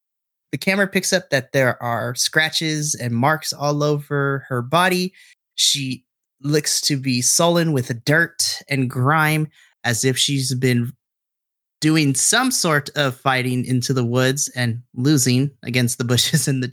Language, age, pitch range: English, 30-49, 125-155 Hz